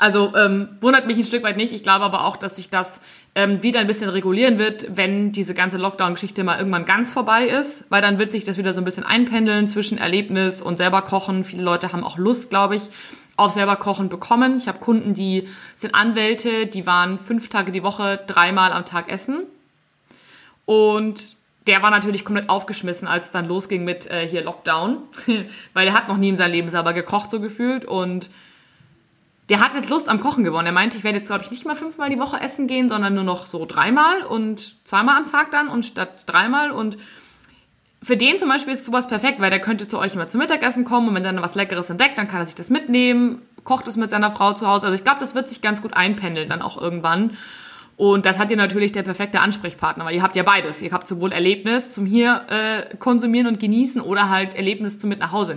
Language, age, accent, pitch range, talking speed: German, 20-39, German, 190-235 Hz, 230 wpm